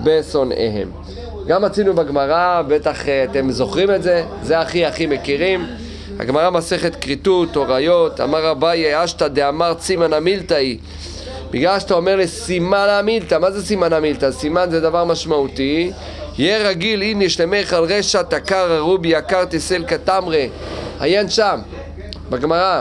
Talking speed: 135 wpm